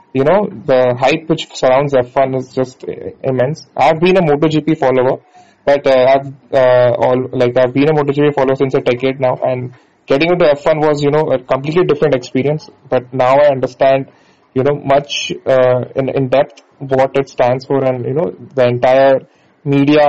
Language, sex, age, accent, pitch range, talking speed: English, male, 20-39, Indian, 130-145 Hz, 185 wpm